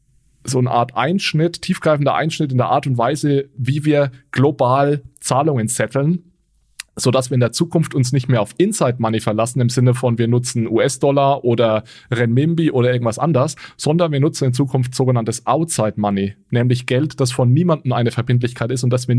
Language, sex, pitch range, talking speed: German, male, 120-145 Hz, 180 wpm